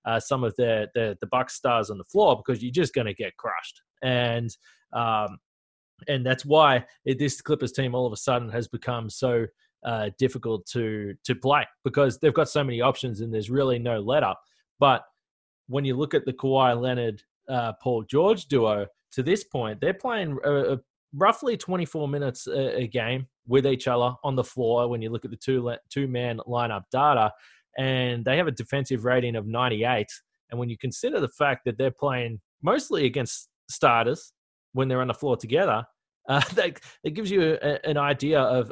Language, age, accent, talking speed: English, 20-39, Australian, 190 wpm